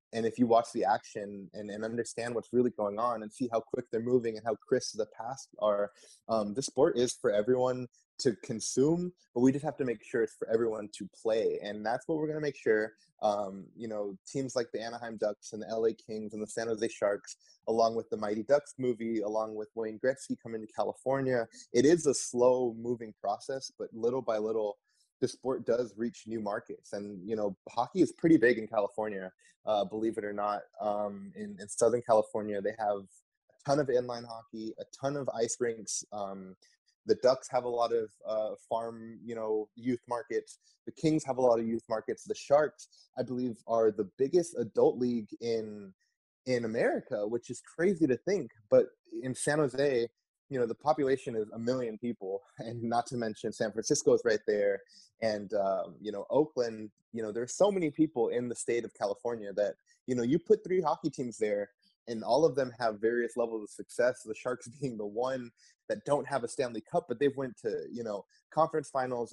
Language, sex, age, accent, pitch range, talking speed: English, male, 20-39, American, 110-140 Hz, 210 wpm